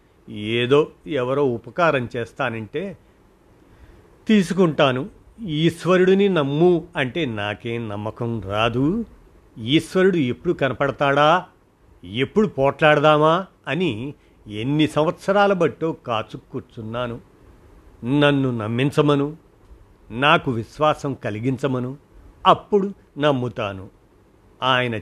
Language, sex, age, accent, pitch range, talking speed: Telugu, male, 50-69, native, 110-150 Hz, 70 wpm